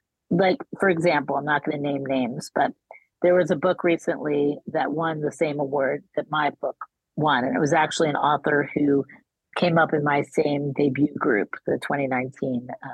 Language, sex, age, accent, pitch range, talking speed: English, female, 40-59, American, 150-190 Hz, 185 wpm